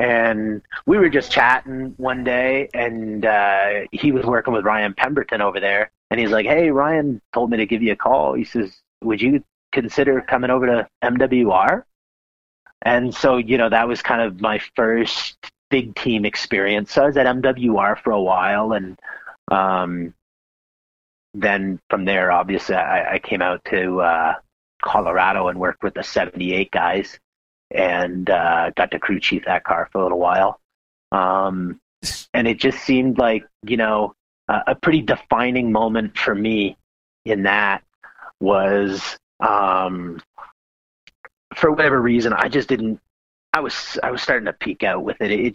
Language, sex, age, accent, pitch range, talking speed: English, male, 30-49, American, 95-125 Hz, 165 wpm